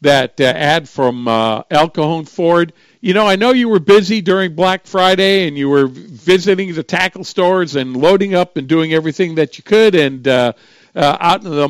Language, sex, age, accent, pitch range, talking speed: English, male, 50-69, American, 140-195 Hz, 200 wpm